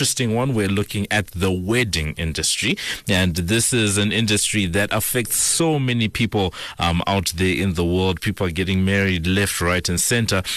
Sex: male